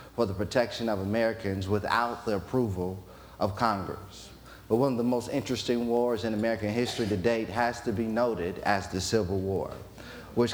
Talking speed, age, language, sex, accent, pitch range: 175 wpm, 30-49, English, male, American, 105-125 Hz